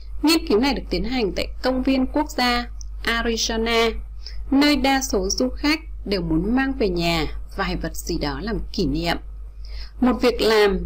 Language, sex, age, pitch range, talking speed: Vietnamese, female, 20-39, 175-255 Hz, 175 wpm